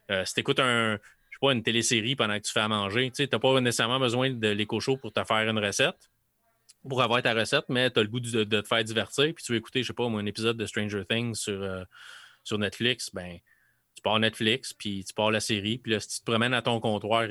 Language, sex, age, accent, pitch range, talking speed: French, male, 20-39, Canadian, 105-130 Hz, 255 wpm